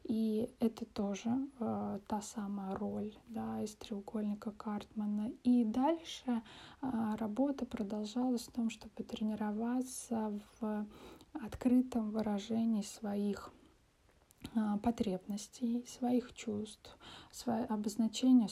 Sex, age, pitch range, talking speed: female, 20-39, 205-235 Hz, 95 wpm